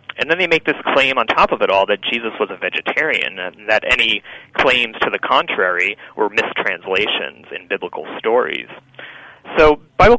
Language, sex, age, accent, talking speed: English, male, 30-49, American, 175 wpm